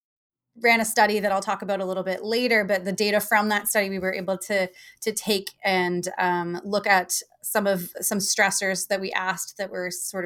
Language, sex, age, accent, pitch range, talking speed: English, female, 20-39, American, 180-210 Hz, 215 wpm